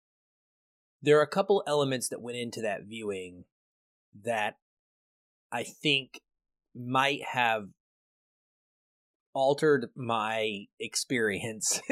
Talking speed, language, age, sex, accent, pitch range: 90 wpm, English, 30-49, male, American, 110-150 Hz